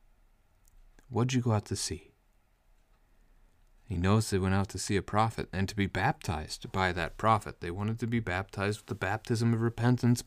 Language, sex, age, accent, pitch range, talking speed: English, male, 30-49, American, 90-110 Hz, 195 wpm